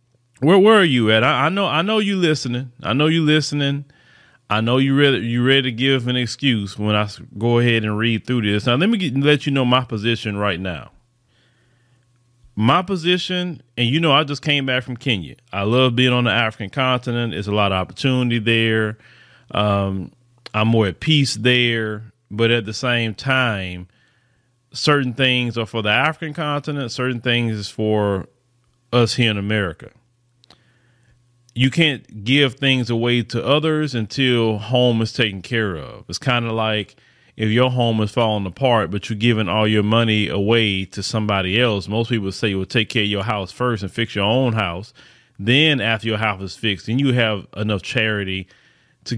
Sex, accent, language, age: male, American, English, 30-49